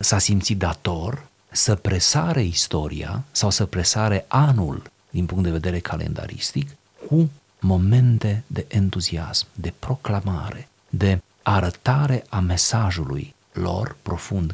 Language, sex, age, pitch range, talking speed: Romanian, male, 40-59, 85-110 Hz, 110 wpm